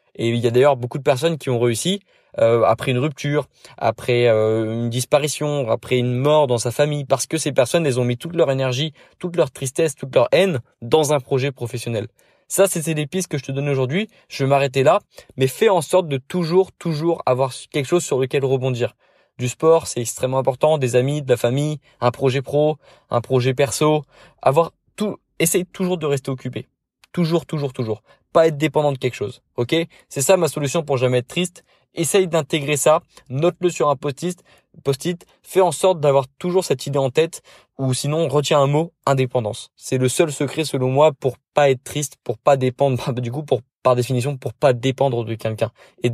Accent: French